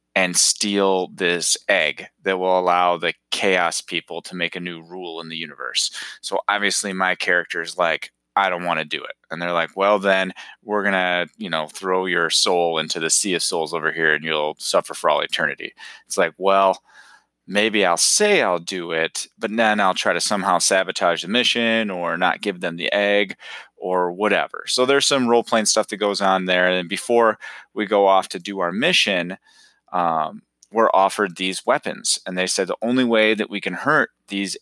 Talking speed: 205 wpm